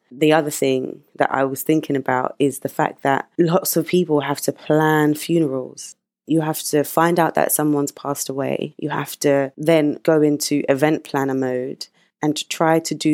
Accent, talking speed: British, 190 wpm